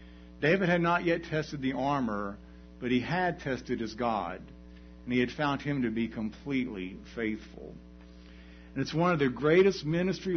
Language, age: English, 60-79